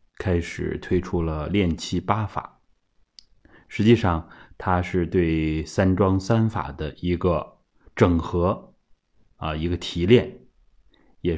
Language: Chinese